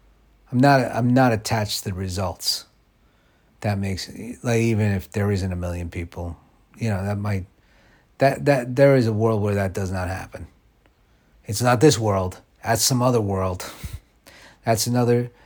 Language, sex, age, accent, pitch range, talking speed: English, male, 30-49, American, 90-110 Hz, 165 wpm